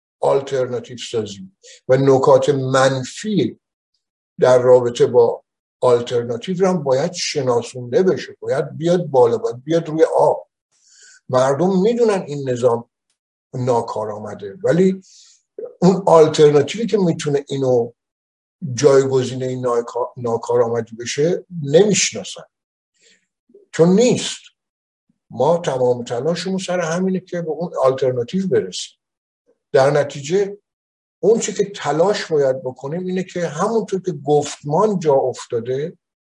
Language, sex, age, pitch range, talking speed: Persian, male, 60-79, 130-215 Hz, 105 wpm